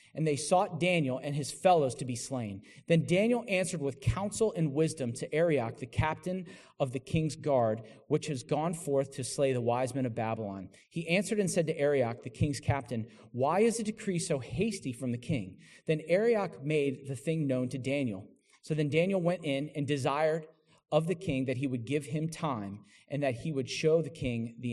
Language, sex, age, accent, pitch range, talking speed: English, male, 40-59, American, 125-165 Hz, 210 wpm